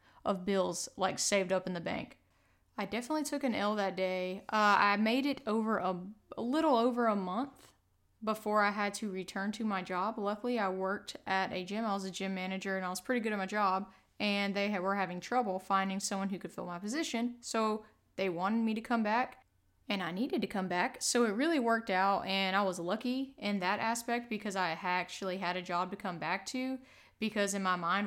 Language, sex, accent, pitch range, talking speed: English, female, American, 190-235 Hz, 220 wpm